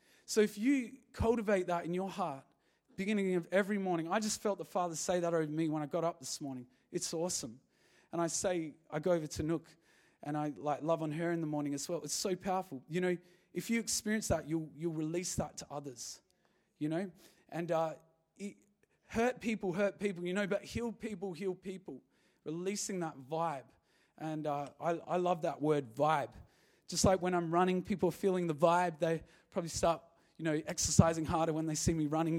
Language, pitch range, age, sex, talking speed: English, 165-200 Hz, 30-49, male, 210 wpm